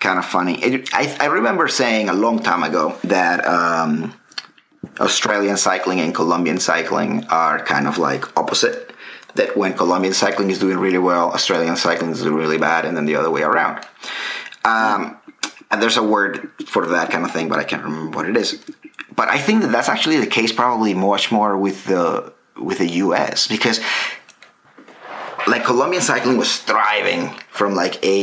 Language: English